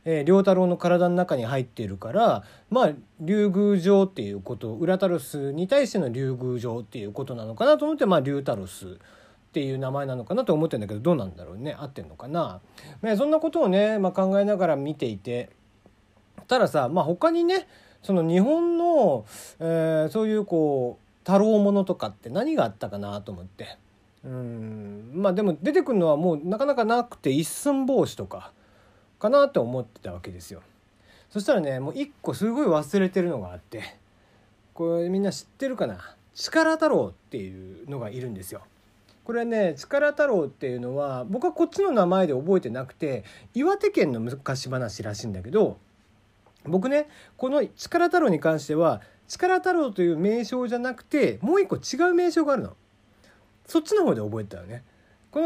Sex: male